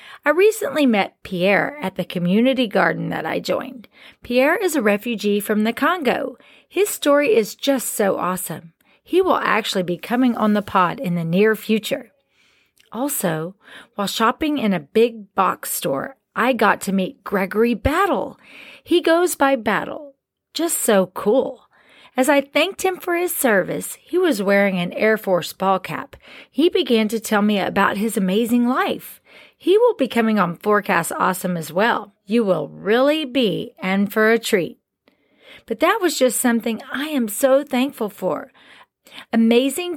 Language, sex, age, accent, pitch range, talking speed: English, female, 40-59, American, 200-275 Hz, 165 wpm